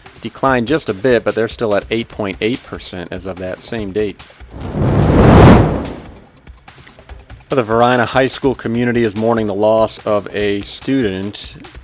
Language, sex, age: English, male, 40-59